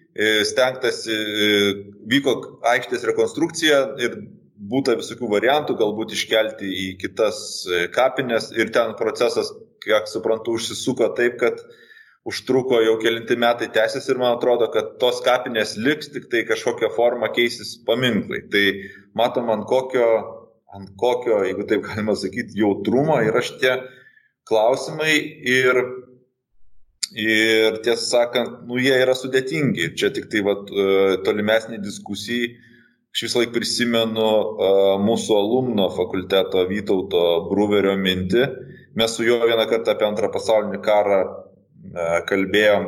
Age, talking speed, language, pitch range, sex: 20-39, 120 wpm, English, 100-130 Hz, male